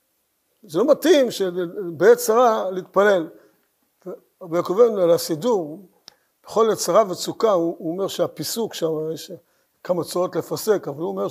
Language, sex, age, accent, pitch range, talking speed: Hebrew, male, 60-79, native, 175-235 Hz, 120 wpm